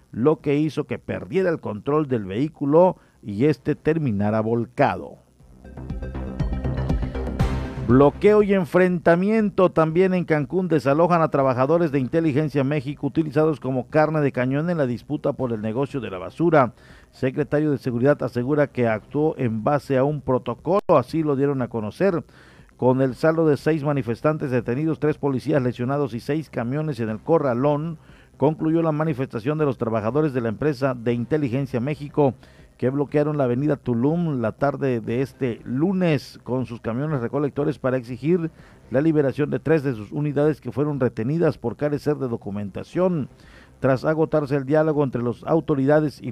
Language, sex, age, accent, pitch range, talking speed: Spanish, male, 50-69, Mexican, 120-155 Hz, 155 wpm